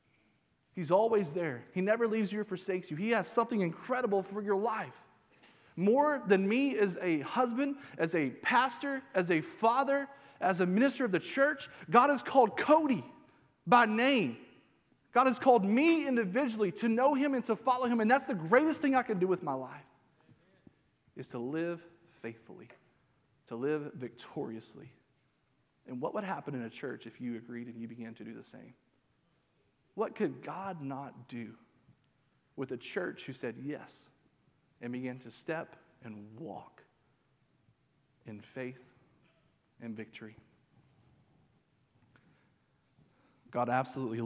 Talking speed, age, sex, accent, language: 150 wpm, 30-49, male, American, English